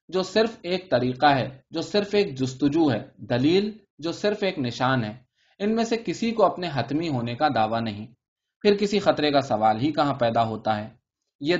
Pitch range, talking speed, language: 125-180 Hz, 195 wpm, Urdu